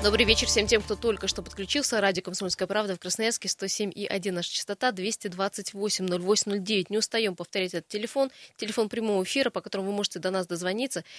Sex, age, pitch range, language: female, 20-39, 185-230 Hz, Russian